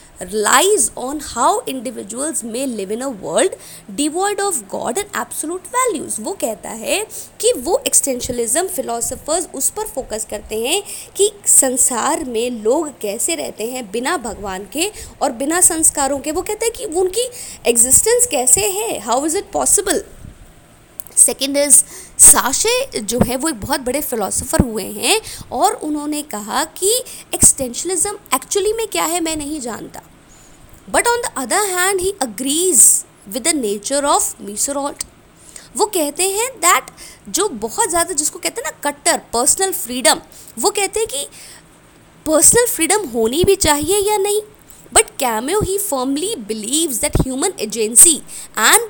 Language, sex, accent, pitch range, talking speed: English, female, Indian, 255-395 Hz, 140 wpm